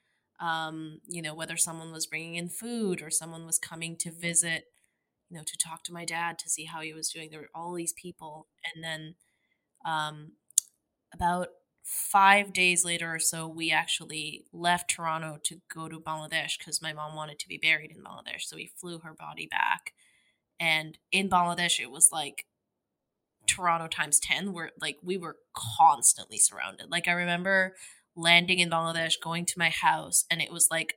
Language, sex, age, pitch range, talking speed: English, female, 20-39, 160-185 Hz, 180 wpm